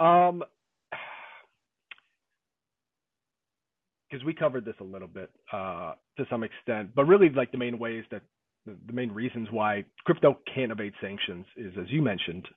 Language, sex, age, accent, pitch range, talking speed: English, male, 30-49, American, 110-135 Hz, 155 wpm